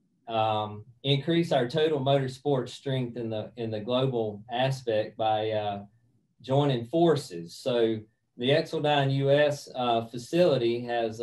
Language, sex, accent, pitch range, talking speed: English, male, American, 115-135 Hz, 125 wpm